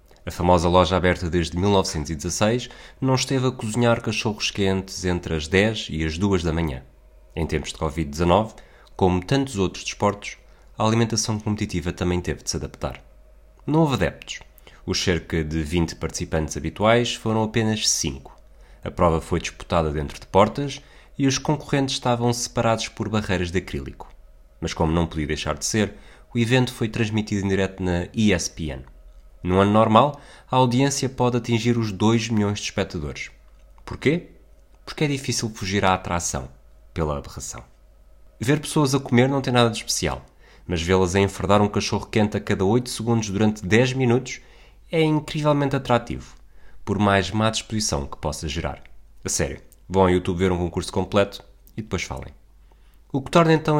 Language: Portuguese